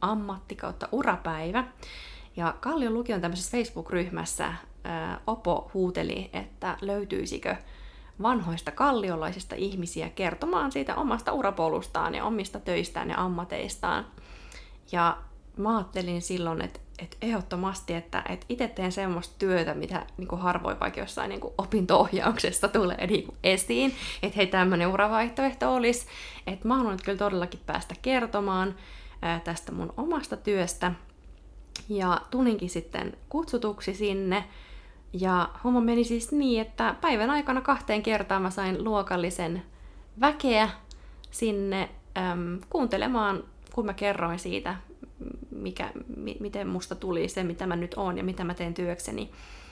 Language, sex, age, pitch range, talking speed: Finnish, female, 20-39, 175-220 Hz, 125 wpm